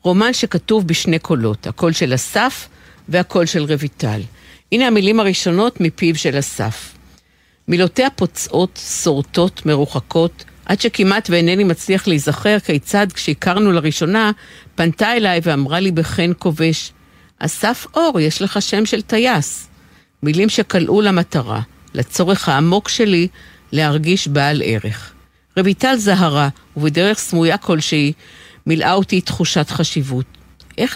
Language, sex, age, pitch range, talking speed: Hebrew, female, 50-69, 150-200 Hz, 115 wpm